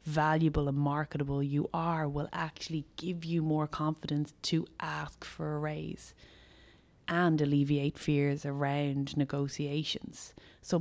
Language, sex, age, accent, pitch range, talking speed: English, female, 20-39, Irish, 140-165 Hz, 120 wpm